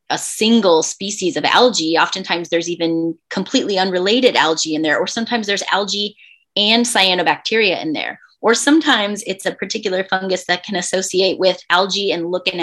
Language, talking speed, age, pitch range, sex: English, 165 wpm, 20-39, 165-220 Hz, female